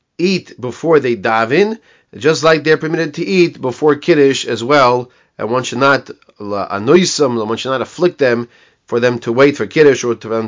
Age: 30-49